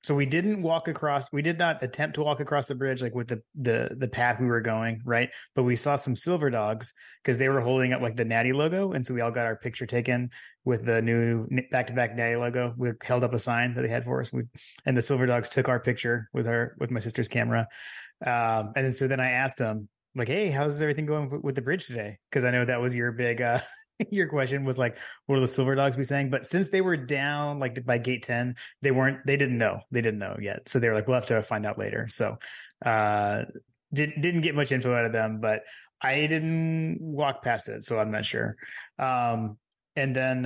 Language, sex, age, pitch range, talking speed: English, male, 20-39, 115-140 Hz, 245 wpm